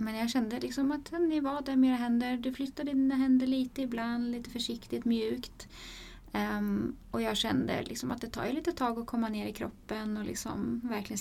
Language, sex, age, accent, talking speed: Swedish, female, 20-39, native, 210 wpm